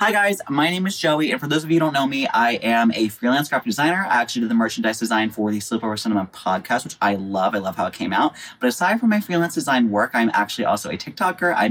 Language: English